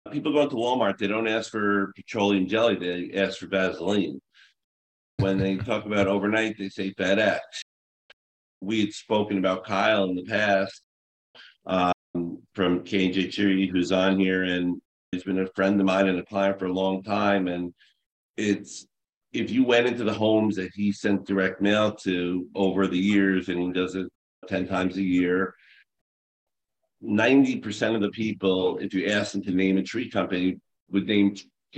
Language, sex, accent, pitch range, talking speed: English, male, American, 95-105 Hz, 180 wpm